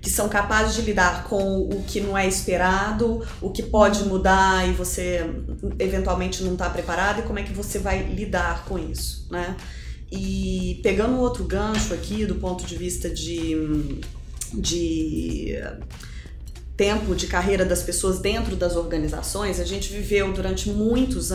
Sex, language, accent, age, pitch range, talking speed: female, Portuguese, Brazilian, 20-39, 175-215 Hz, 155 wpm